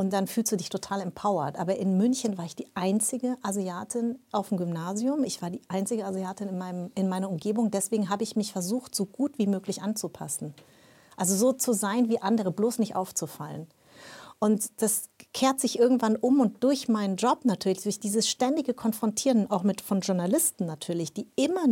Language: German